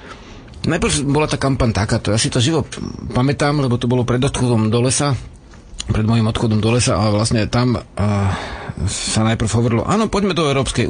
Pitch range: 110-135 Hz